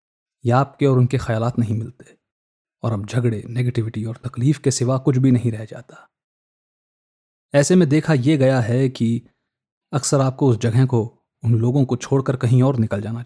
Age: 30-49